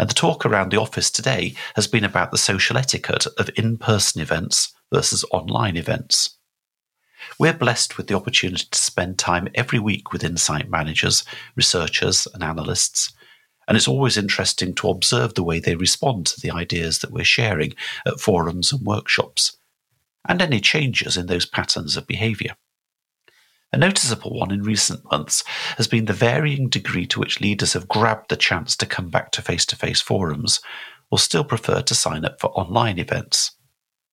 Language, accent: English, British